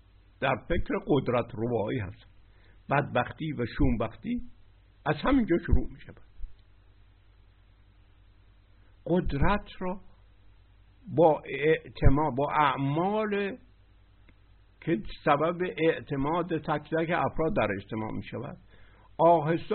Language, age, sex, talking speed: Persian, 60-79, male, 90 wpm